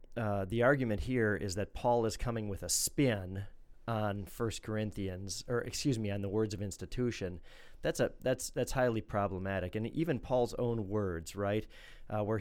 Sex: male